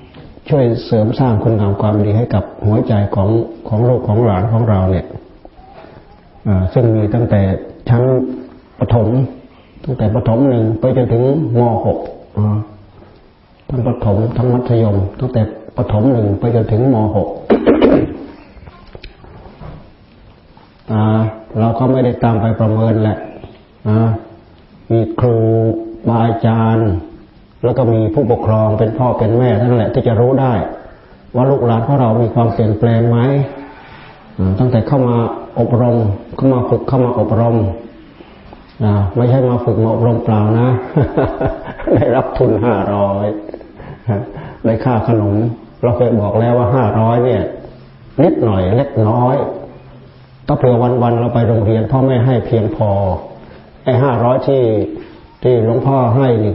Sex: male